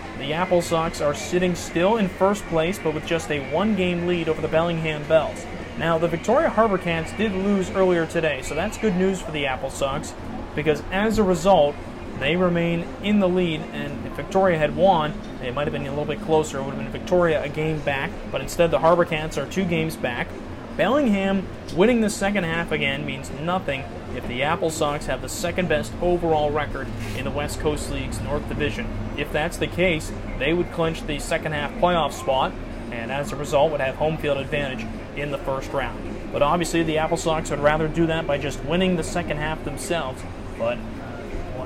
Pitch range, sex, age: 145-175 Hz, male, 30-49